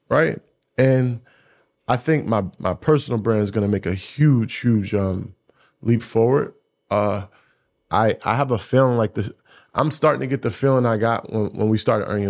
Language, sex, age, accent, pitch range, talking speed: English, male, 20-39, American, 105-125 Hz, 190 wpm